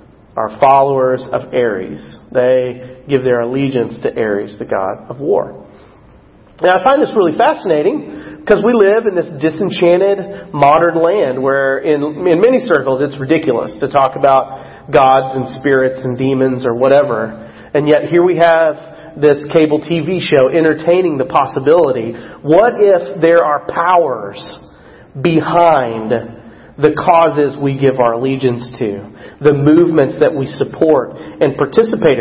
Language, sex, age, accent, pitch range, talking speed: English, male, 40-59, American, 130-170 Hz, 145 wpm